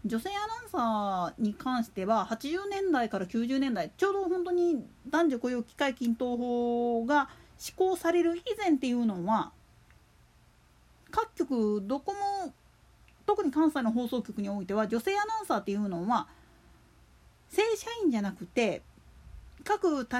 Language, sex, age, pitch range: Japanese, female, 40-59, 225-340 Hz